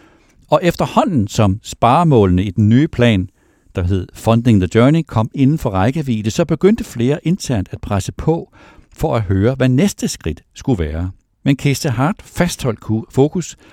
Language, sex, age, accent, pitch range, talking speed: Danish, male, 60-79, native, 95-130 Hz, 160 wpm